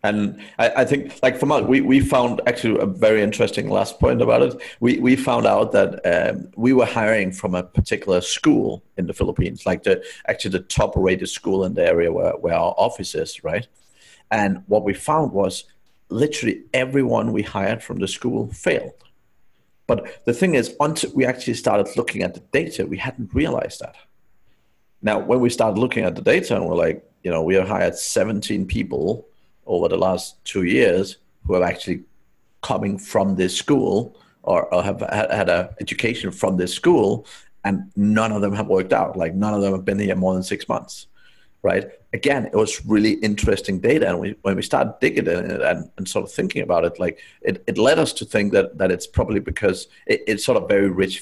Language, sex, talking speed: English, male, 205 wpm